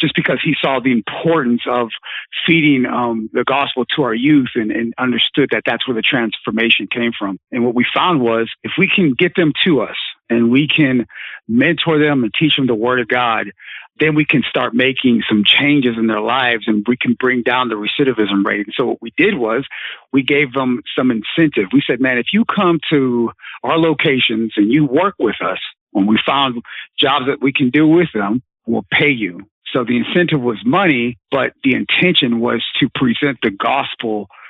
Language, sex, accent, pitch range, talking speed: English, male, American, 120-145 Hz, 205 wpm